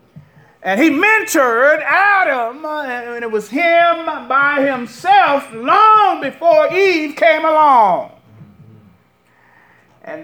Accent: American